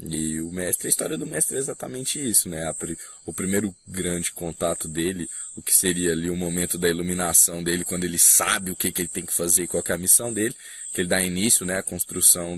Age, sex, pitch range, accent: 20-39, male, 85-105 Hz, Brazilian